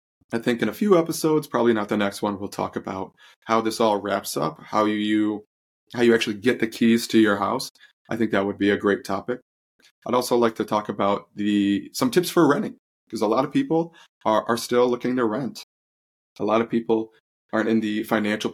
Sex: male